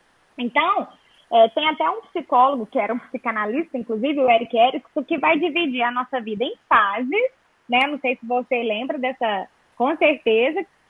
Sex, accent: female, Brazilian